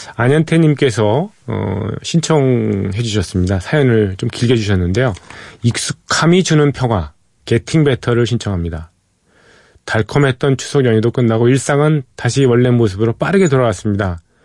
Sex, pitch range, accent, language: male, 105-130 Hz, native, Korean